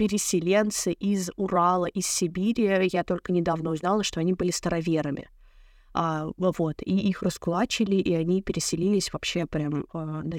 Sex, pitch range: female, 175-205 Hz